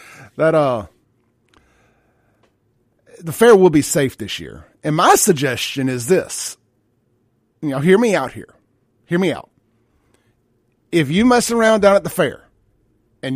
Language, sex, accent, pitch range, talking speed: English, male, American, 130-160 Hz, 145 wpm